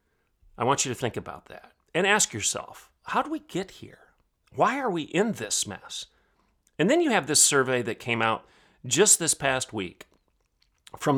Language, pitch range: English, 110-130 Hz